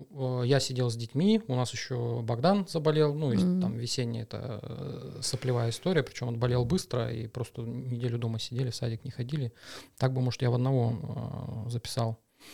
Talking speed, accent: 170 wpm, native